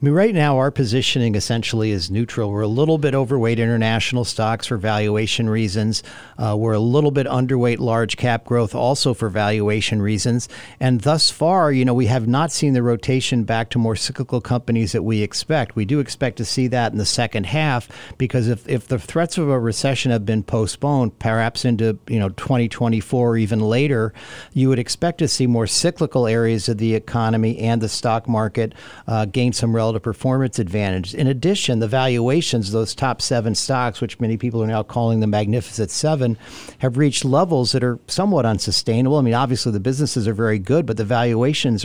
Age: 50-69